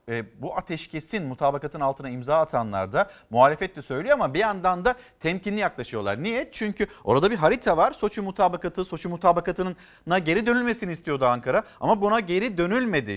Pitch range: 165-230 Hz